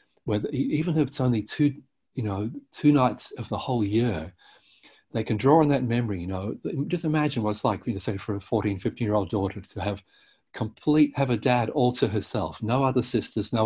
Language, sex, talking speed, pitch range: English, male, 220 wpm, 100-125 Hz